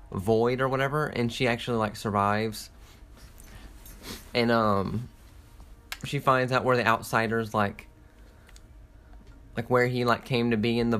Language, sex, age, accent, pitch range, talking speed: English, male, 20-39, American, 105-125 Hz, 140 wpm